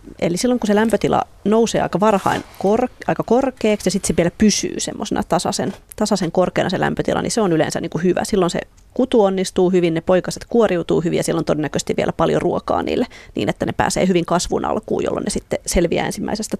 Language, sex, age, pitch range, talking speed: Finnish, female, 30-49, 170-205 Hz, 200 wpm